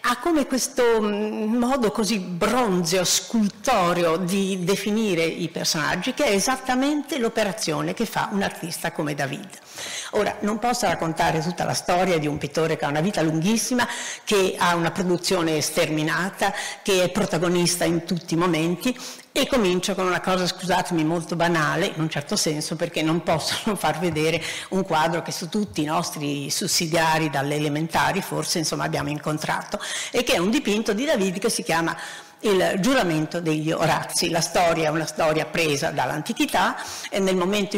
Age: 50-69